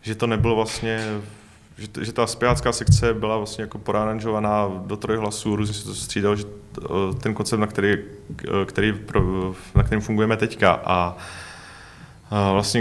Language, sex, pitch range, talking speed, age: Czech, male, 95-110 Hz, 145 wpm, 20-39